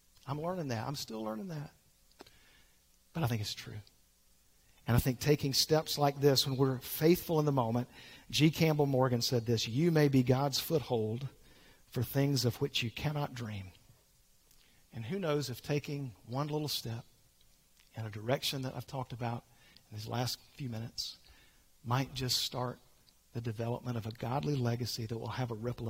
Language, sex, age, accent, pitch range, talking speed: English, male, 50-69, American, 110-140 Hz, 175 wpm